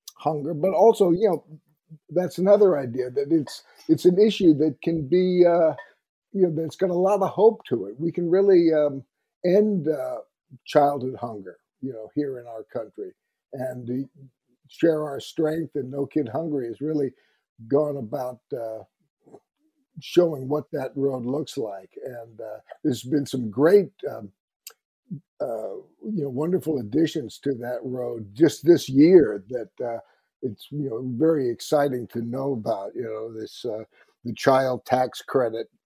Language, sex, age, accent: English, male, 50-69, American